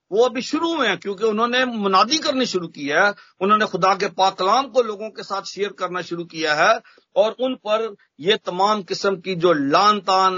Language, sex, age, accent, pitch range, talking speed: Hindi, male, 50-69, native, 185-245 Hz, 200 wpm